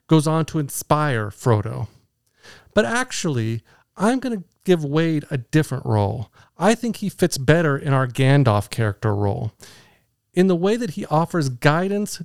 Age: 40-59